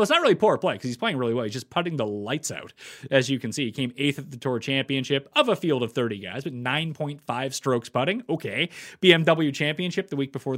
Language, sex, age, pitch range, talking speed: English, male, 30-49, 125-170 Hz, 245 wpm